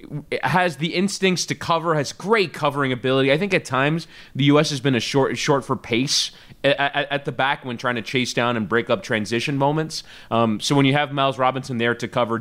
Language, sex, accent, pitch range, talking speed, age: English, male, American, 115-150 Hz, 230 wpm, 20-39